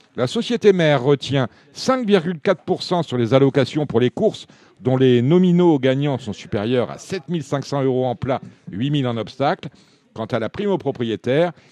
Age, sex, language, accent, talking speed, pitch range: 50-69, male, French, French, 170 wpm, 105-145 Hz